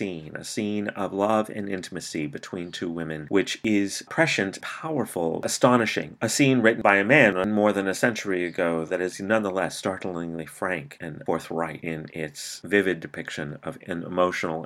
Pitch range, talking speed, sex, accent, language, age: 85-110 Hz, 160 wpm, male, American, English, 30-49